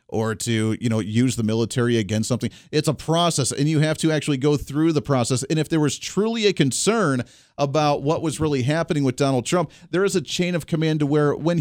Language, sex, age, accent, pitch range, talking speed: English, male, 40-59, American, 130-170 Hz, 235 wpm